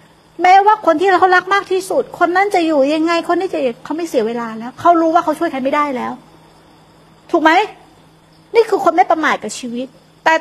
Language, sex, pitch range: Thai, female, 255-340 Hz